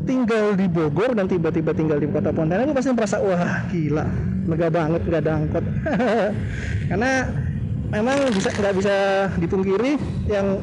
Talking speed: 145 wpm